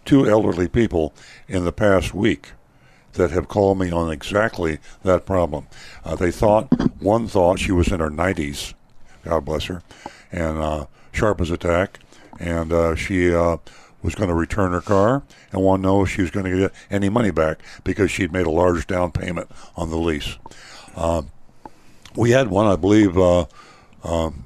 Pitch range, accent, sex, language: 85-100 Hz, American, male, English